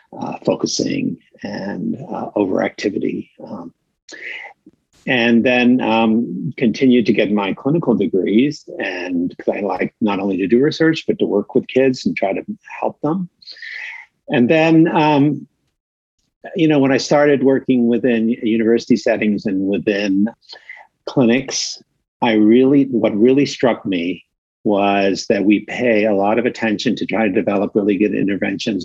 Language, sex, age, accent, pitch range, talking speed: English, male, 50-69, American, 100-145 Hz, 145 wpm